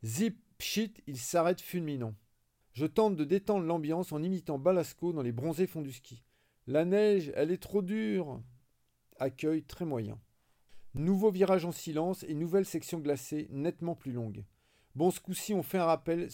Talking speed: 170 wpm